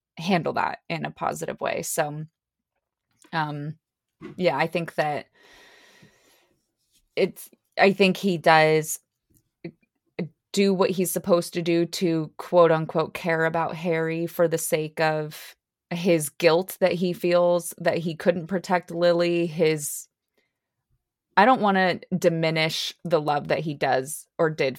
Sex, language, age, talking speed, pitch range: female, English, 20-39, 135 wpm, 150-175 Hz